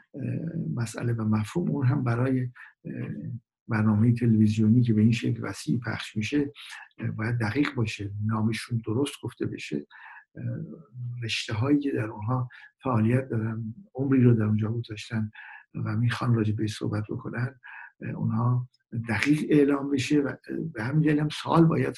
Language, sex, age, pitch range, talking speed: Persian, male, 60-79, 110-125 Hz, 135 wpm